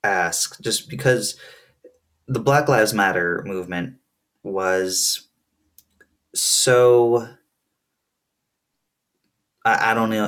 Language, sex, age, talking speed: English, male, 20-39, 75 wpm